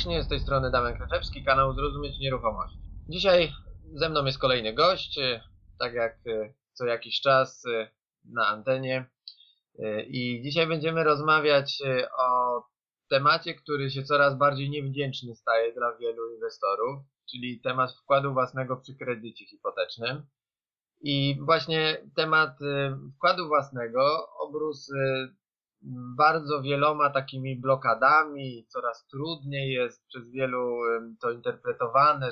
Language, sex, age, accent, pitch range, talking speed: Polish, male, 20-39, native, 120-145 Hz, 110 wpm